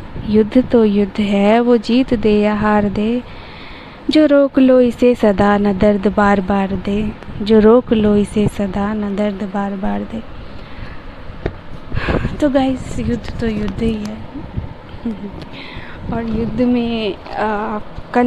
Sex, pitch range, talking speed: female, 210-230 Hz, 135 wpm